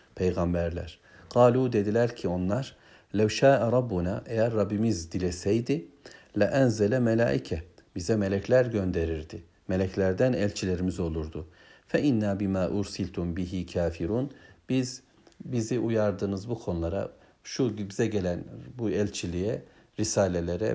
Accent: native